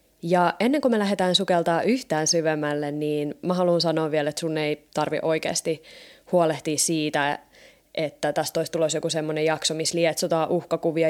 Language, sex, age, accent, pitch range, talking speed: Finnish, female, 20-39, native, 155-180 Hz, 160 wpm